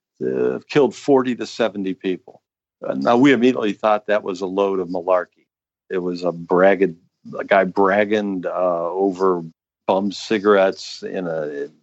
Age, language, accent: 50-69, English, American